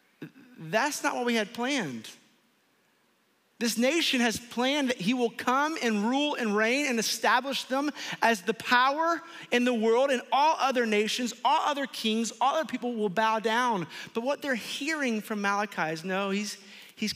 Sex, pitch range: male, 170-225 Hz